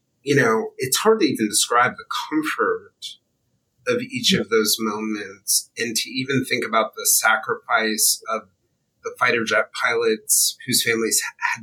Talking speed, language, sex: 150 wpm, English, male